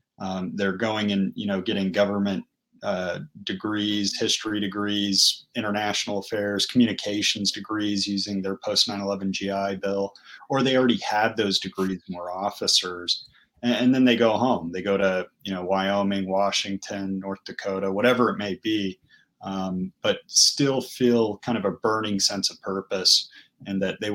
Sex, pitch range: male, 95-115 Hz